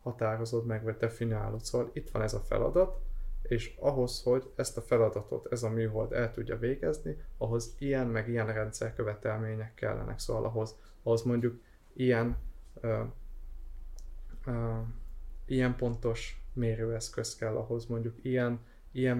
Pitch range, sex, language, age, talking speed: 110-130 Hz, male, Hungarian, 20-39, 130 wpm